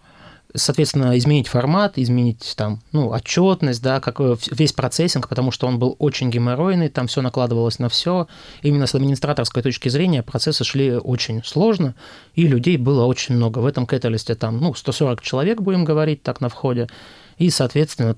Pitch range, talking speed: 120-145 Hz, 165 wpm